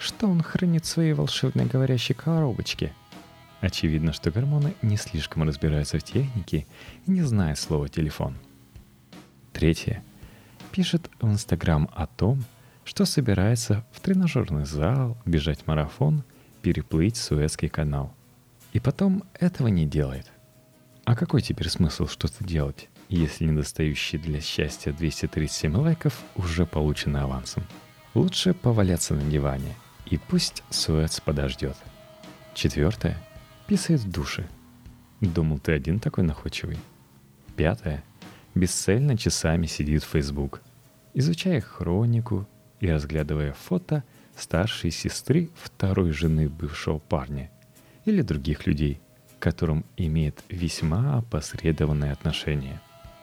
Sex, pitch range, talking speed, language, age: male, 75-125 Hz, 115 wpm, Russian, 30-49